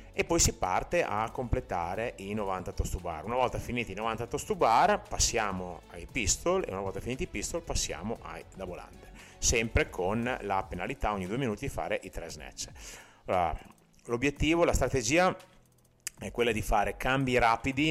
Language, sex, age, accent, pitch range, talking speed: Italian, male, 30-49, native, 90-110 Hz, 180 wpm